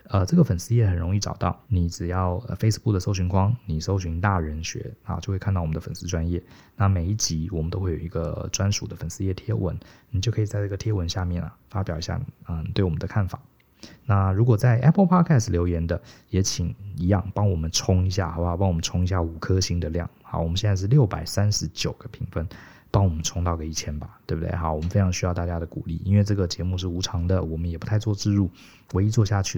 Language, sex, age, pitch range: Chinese, male, 20-39, 85-105 Hz